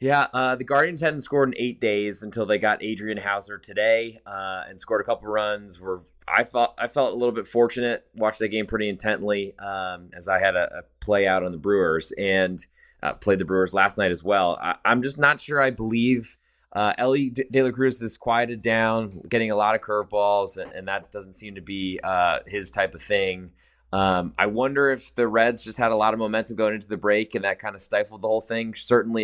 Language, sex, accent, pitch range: English, male, American, 95-120 Hz